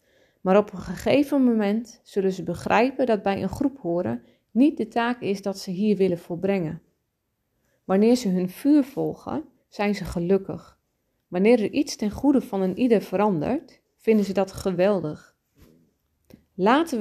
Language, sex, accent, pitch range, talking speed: Dutch, female, Dutch, 185-230 Hz, 155 wpm